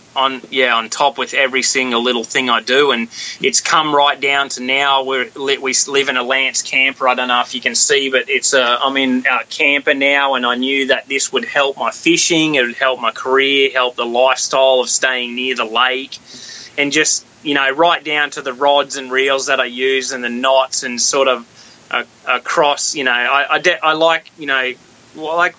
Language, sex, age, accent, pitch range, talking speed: English, male, 20-39, Australian, 125-140 Hz, 220 wpm